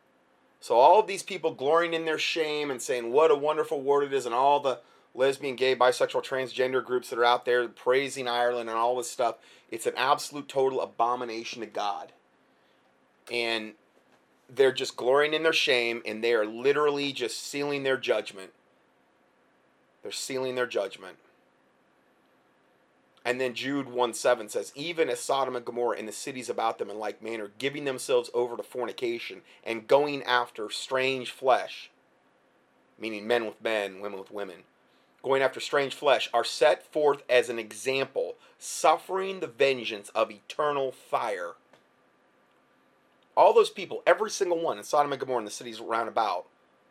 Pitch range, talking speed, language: 120-150 Hz, 160 wpm, English